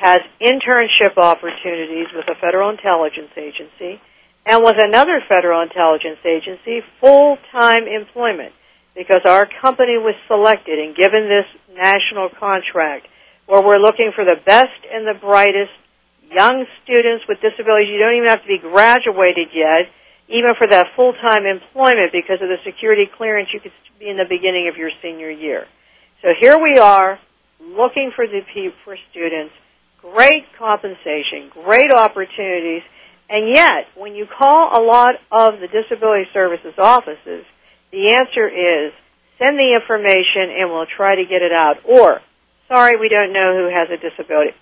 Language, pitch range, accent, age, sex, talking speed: English, 180-240 Hz, American, 60-79, female, 155 wpm